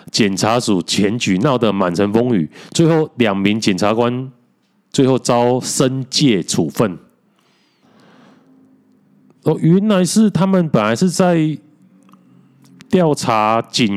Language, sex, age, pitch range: Chinese, male, 30-49, 105-160 Hz